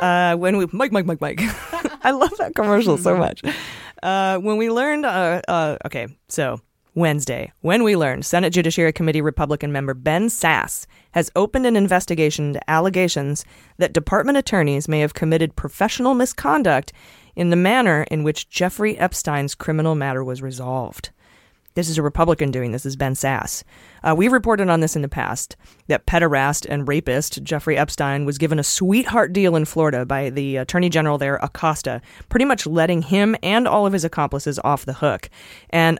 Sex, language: female, English